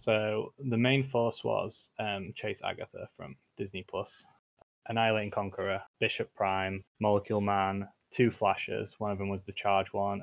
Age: 20-39